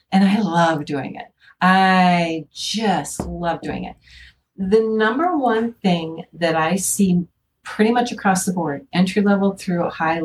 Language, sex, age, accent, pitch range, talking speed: English, female, 50-69, American, 165-220 Hz, 150 wpm